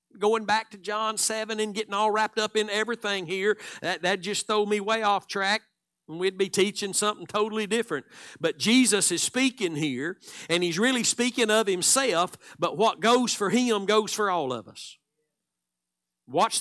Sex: male